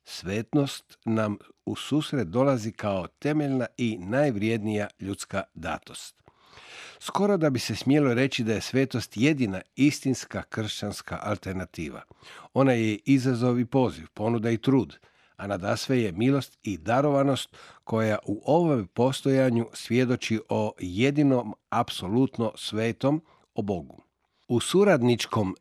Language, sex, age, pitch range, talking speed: Croatian, male, 50-69, 105-135 Hz, 120 wpm